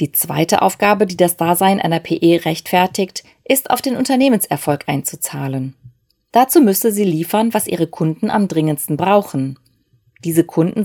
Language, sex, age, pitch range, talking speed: German, female, 30-49, 160-220 Hz, 145 wpm